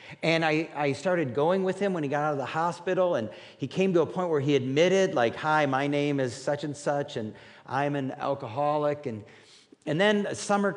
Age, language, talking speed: 50-69, English, 215 wpm